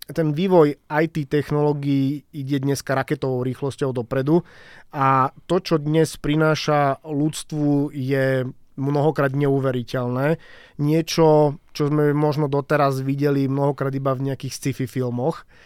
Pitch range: 140-160 Hz